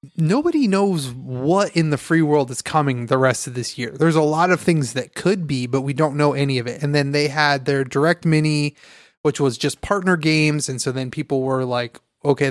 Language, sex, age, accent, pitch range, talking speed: English, male, 30-49, American, 130-175 Hz, 230 wpm